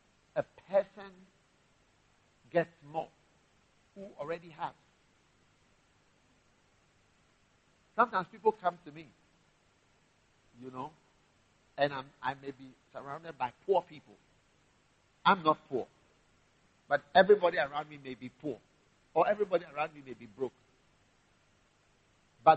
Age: 50-69